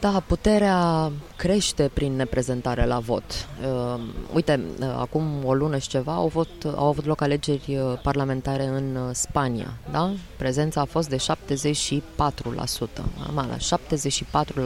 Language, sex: Romanian, female